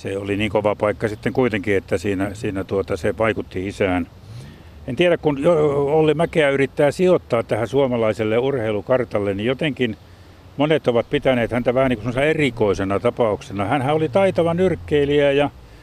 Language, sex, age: Finnish, male, 60-79